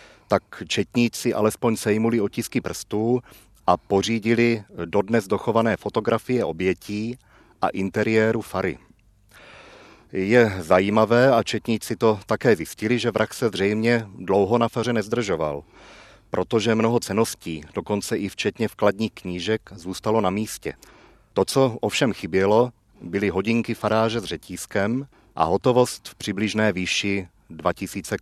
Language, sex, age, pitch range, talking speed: Czech, male, 40-59, 95-115 Hz, 120 wpm